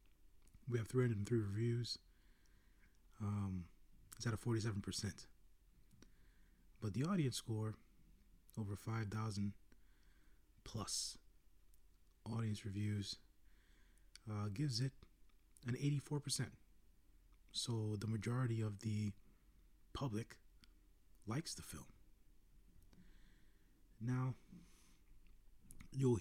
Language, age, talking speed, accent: English, 30-49, 80 wpm, American